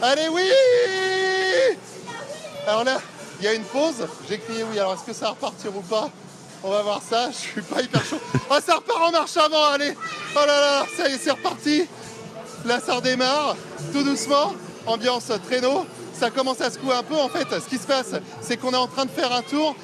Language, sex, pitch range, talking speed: French, male, 245-315 Hz, 220 wpm